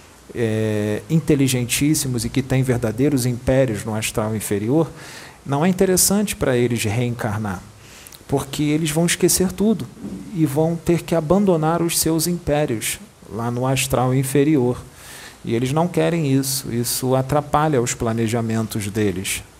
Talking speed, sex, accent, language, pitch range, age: 130 wpm, male, Brazilian, English, 115-145 Hz, 40-59